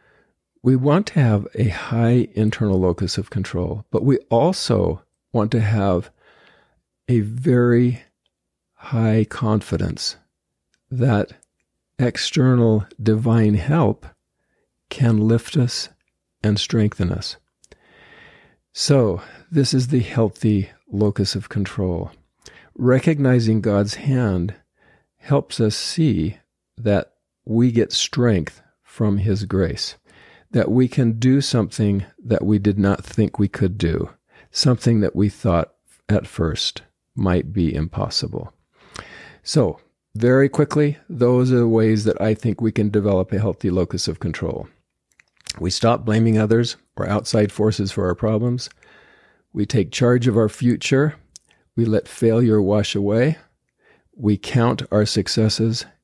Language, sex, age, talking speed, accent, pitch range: English, male, 50-69, 125 wpm, American, 100-120 Hz